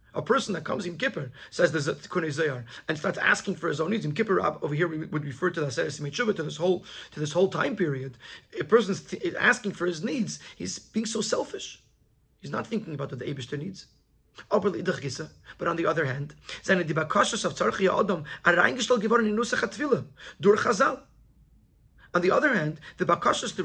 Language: English